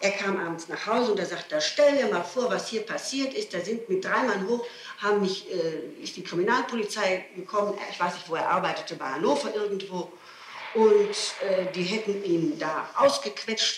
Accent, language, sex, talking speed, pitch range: German, German, female, 200 wpm, 185-250 Hz